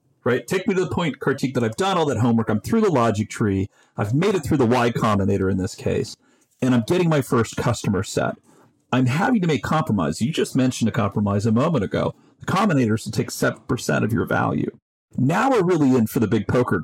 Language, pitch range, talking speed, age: English, 105-135 Hz, 230 wpm, 40-59